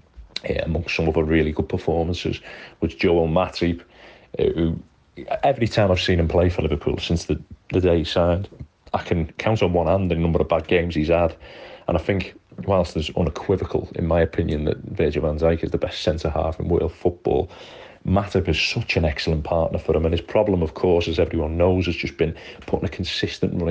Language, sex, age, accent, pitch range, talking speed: English, male, 40-59, British, 80-95 Hz, 210 wpm